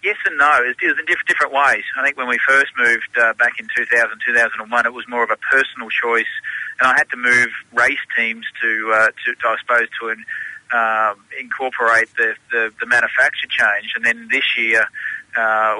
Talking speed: 200 wpm